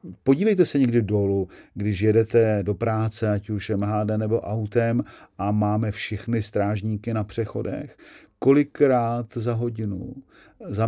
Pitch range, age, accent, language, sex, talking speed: 105-120 Hz, 50-69, native, Czech, male, 125 wpm